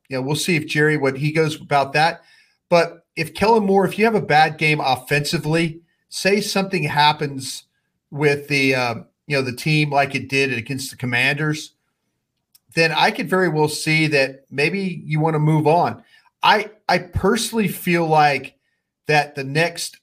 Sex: male